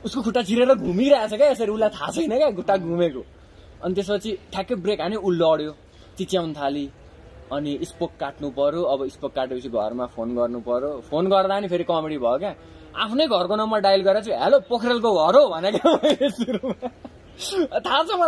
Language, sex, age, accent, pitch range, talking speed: English, male, 20-39, Indian, 135-215 Hz, 95 wpm